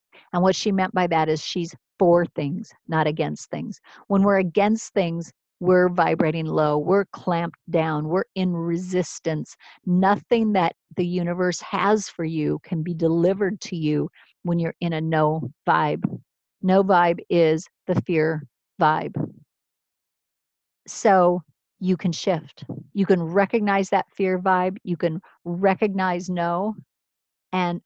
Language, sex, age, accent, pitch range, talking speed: English, female, 50-69, American, 165-195 Hz, 140 wpm